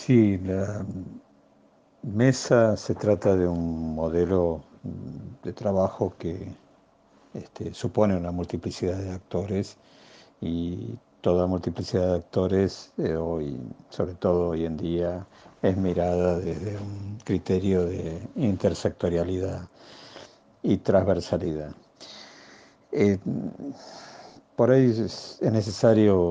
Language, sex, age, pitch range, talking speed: Spanish, male, 60-79, 90-105 Hz, 100 wpm